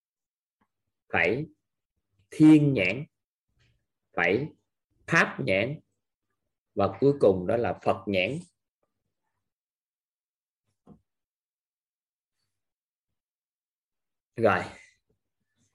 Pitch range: 95-125 Hz